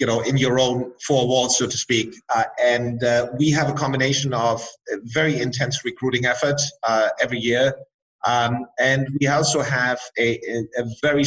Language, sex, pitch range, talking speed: English, male, 125-150 Hz, 170 wpm